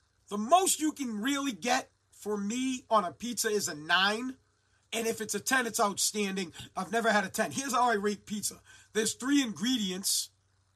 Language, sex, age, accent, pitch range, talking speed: English, male, 40-59, American, 190-245 Hz, 190 wpm